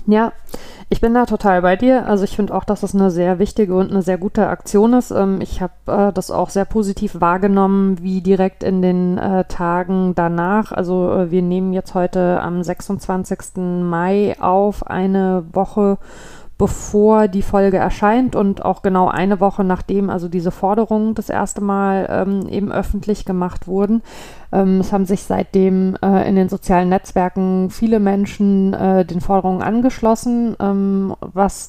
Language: German